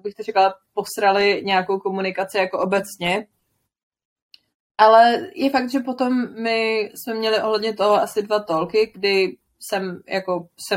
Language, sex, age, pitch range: Czech, female, 20-39, 175-215 Hz